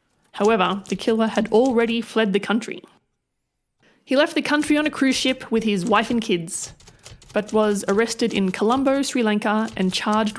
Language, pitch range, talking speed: English, 200-245 Hz, 175 wpm